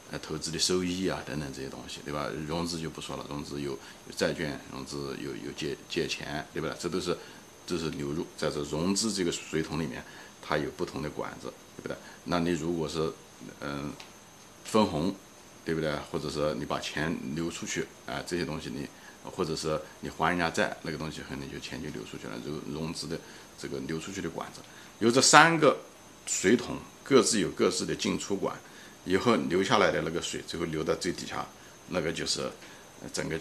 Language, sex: Chinese, male